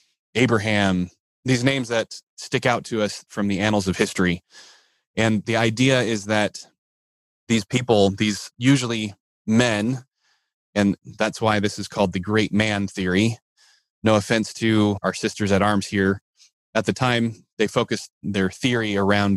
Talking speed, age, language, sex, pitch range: 150 wpm, 20-39, English, male, 100-115 Hz